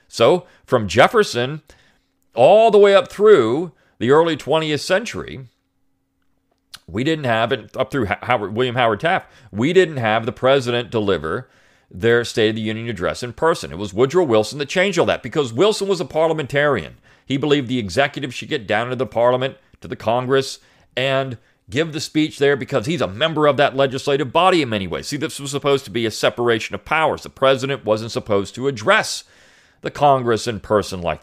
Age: 40-59